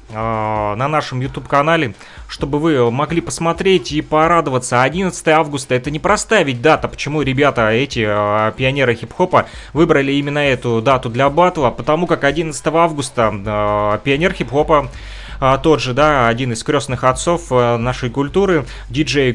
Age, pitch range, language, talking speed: 30-49, 115-155 Hz, Russian, 135 wpm